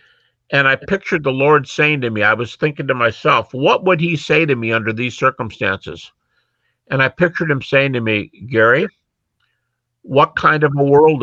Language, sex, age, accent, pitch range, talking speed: English, male, 50-69, American, 130-190 Hz, 185 wpm